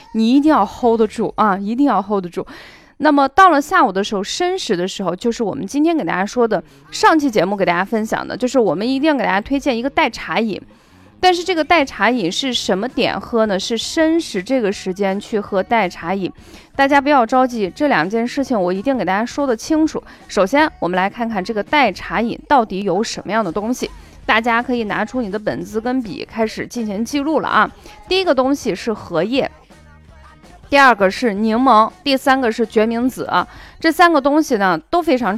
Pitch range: 200-280 Hz